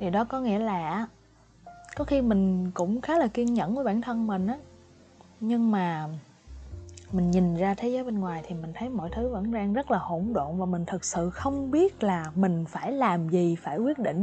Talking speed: 220 wpm